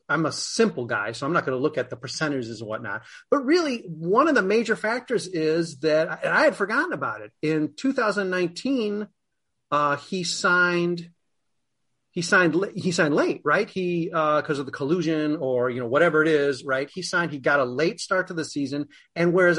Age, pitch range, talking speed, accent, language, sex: 30-49, 140-180 Hz, 200 wpm, American, English, male